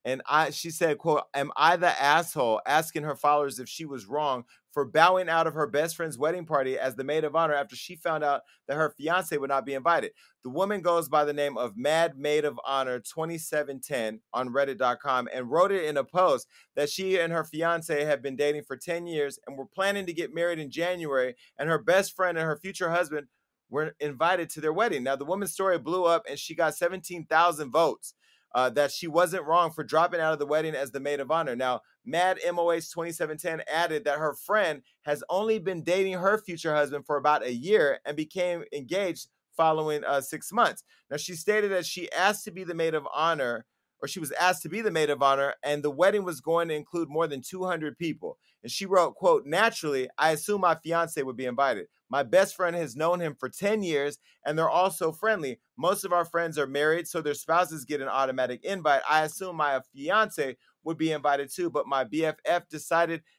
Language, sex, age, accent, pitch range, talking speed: English, male, 30-49, American, 145-175 Hz, 220 wpm